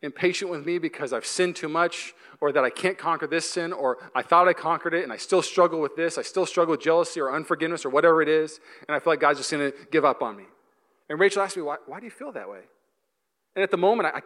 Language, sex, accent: English, male, American